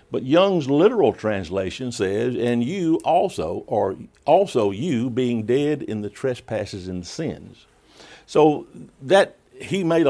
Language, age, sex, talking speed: English, 60-79, male, 130 wpm